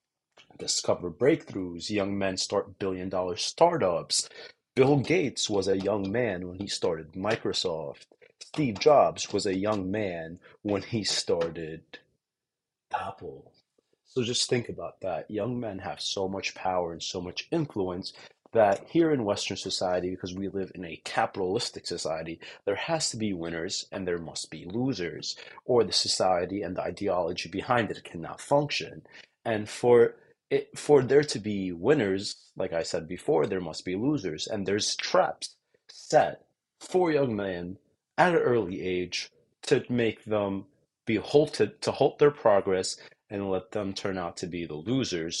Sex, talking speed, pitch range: male, 155 wpm, 95-125 Hz